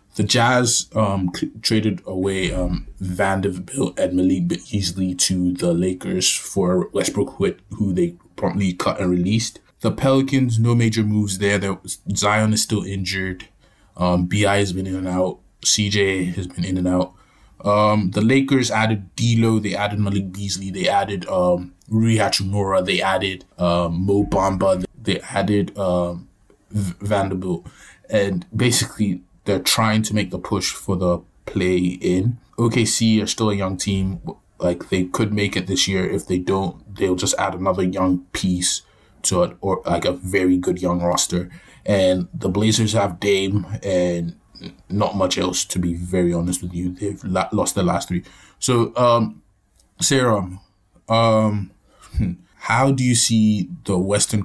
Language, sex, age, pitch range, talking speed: English, male, 20-39, 90-110 Hz, 155 wpm